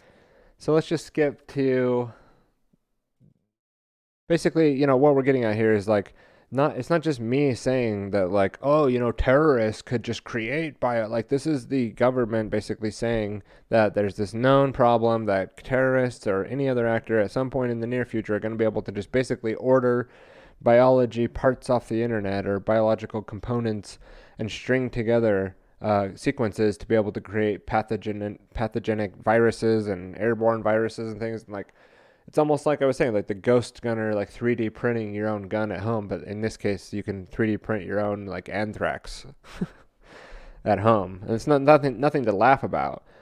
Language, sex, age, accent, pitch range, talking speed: English, male, 20-39, American, 105-130 Hz, 185 wpm